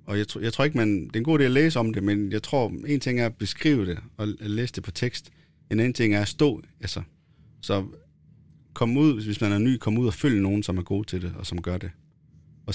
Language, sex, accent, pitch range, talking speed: Danish, male, native, 95-115 Hz, 280 wpm